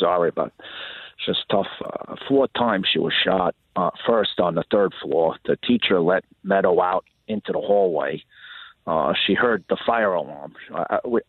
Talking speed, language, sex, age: 170 wpm, English, male, 40-59